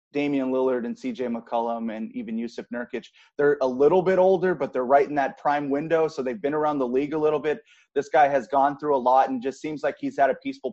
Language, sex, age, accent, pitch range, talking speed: English, male, 30-49, American, 130-165 Hz, 245 wpm